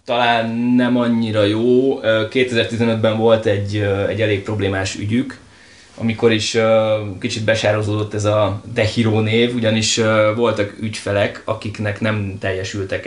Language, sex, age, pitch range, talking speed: Hungarian, male, 20-39, 100-115 Hz, 115 wpm